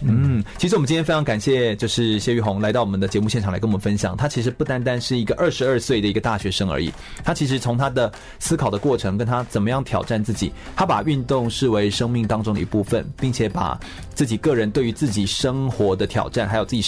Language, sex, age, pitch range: Chinese, male, 30-49, 105-130 Hz